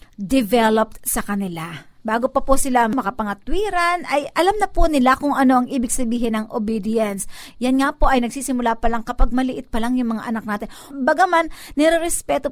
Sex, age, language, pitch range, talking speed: female, 50-69, Filipino, 240-315 Hz, 175 wpm